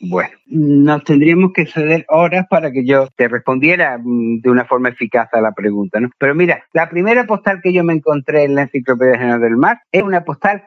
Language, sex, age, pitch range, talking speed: Spanish, male, 50-69, 125-185 Hz, 210 wpm